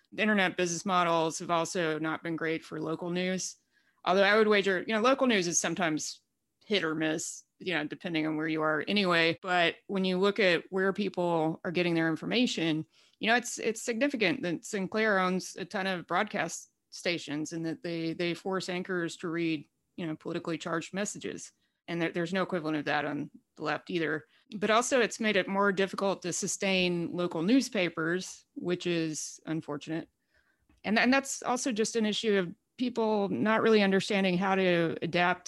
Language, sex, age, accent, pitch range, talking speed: English, female, 30-49, American, 165-200 Hz, 185 wpm